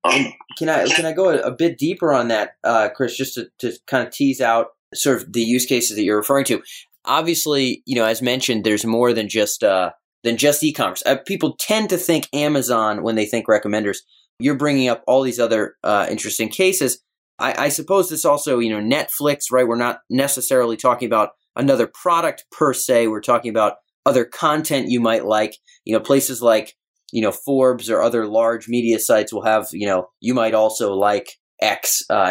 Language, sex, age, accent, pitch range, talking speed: English, male, 20-39, American, 115-155 Hz, 200 wpm